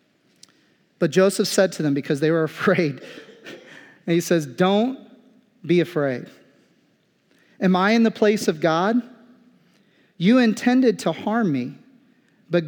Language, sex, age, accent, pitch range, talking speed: English, male, 40-59, American, 170-225 Hz, 135 wpm